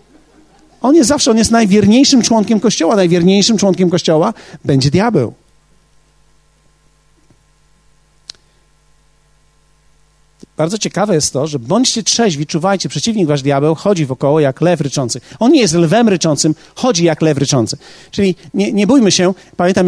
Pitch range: 160-205 Hz